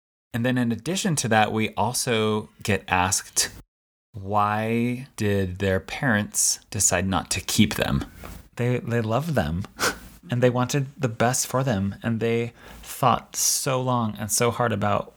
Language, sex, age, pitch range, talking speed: English, male, 30-49, 100-120 Hz, 155 wpm